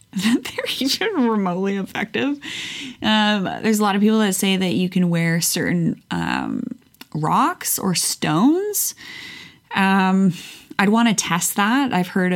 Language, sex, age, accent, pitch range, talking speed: English, female, 20-39, American, 175-220 Hz, 145 wpm